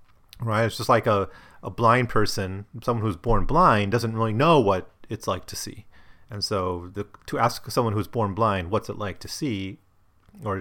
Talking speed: 200 wpm